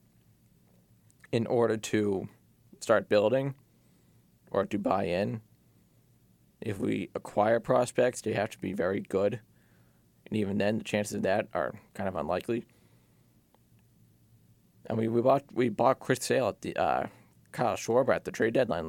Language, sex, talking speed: English, male, 150 wpm